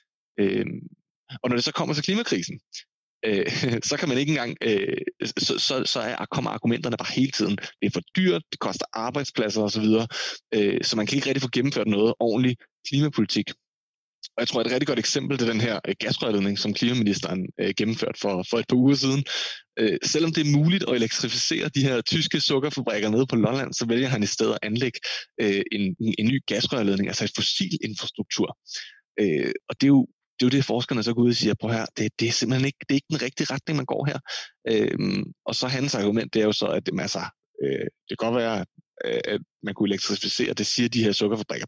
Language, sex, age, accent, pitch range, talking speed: Danish, male, 20-39, native, 110-140 Hz, 220 wpm